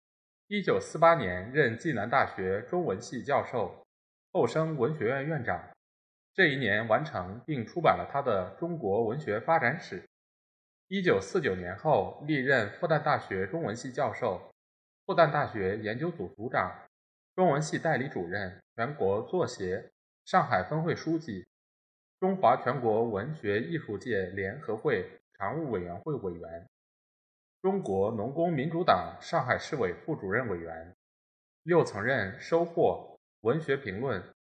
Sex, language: male, Chinese